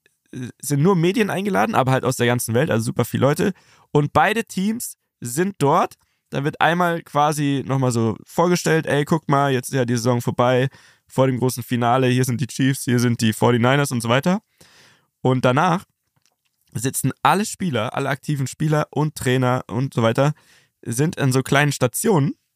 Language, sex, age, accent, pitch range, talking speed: German, male, 20-39, German, 110-140 Hz, 180 wpm